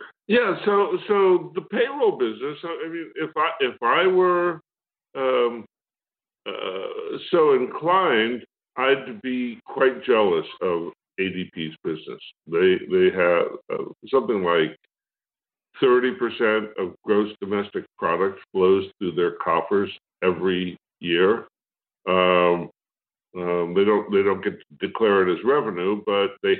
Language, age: English, 60-79